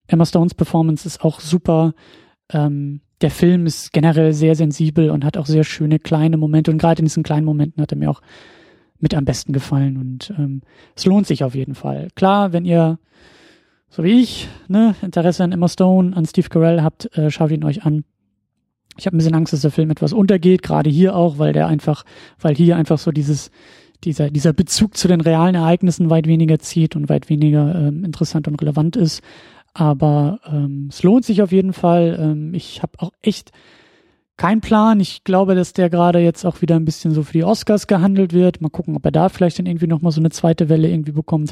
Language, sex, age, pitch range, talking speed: German, male, 30-49, 155-180 Hz, 210 wpm